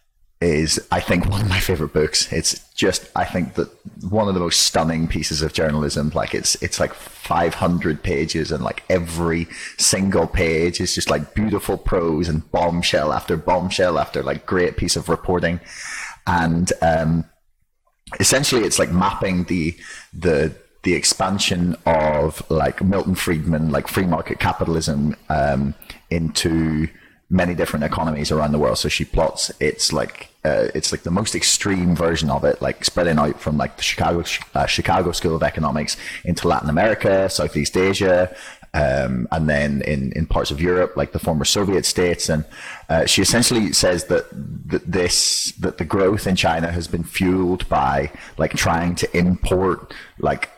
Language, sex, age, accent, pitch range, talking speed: English, male, 30-49, British, 80-90 Hz, 165 wpm